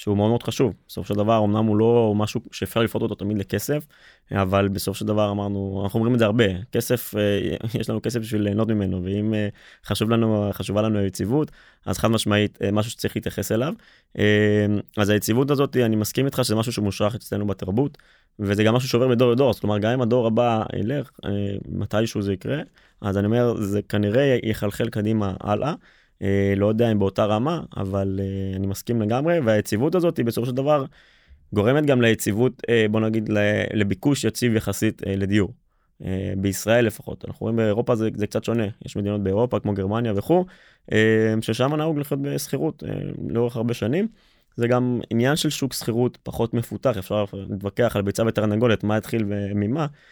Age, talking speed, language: 20-39, 180 wpm, Hebrew